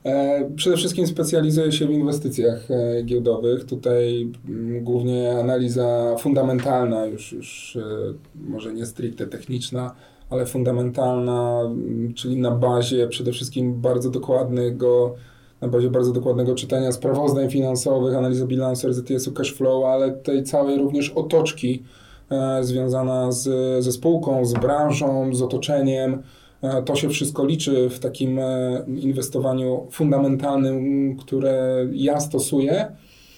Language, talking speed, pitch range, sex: Polish, 110 wpm, 125-145 Hz, male